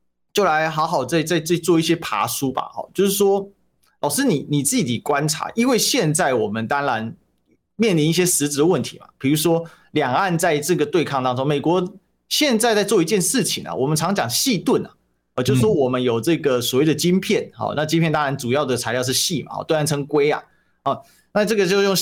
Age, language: 30-49, Chinese